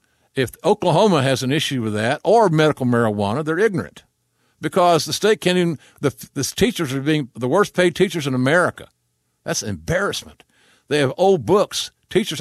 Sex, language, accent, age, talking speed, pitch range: male, English, American, 60-79, 170 wpm, 110-160 Hz